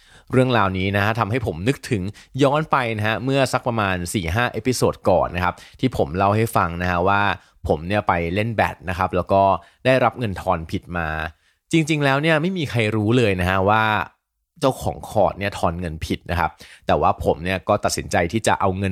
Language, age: Thai, 20-39